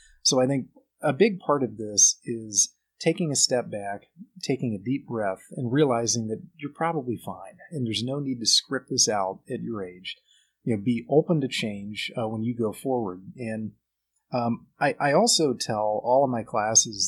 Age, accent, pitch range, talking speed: 30-49, American, 110-145 Hz, 195 wpm